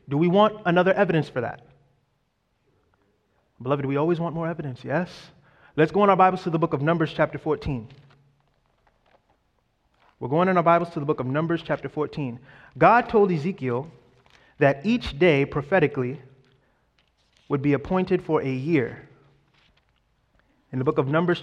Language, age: English, 30-49